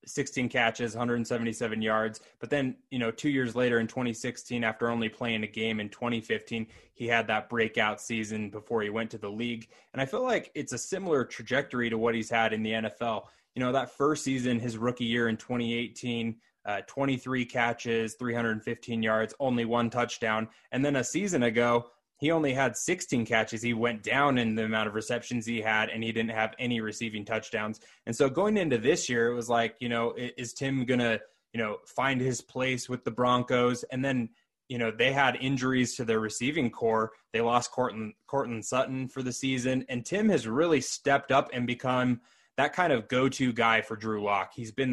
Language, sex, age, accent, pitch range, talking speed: English, male, 20-39, American, 115-125 Hz, 200 wpm